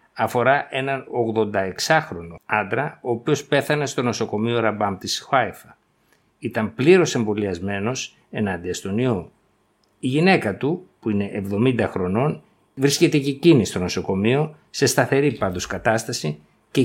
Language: Greek